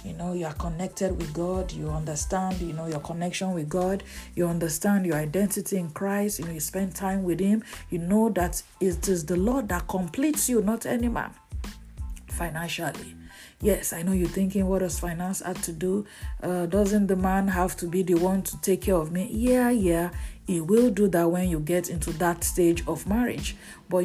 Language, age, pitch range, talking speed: English, 50-69, 175-225 Hz, 205 wpm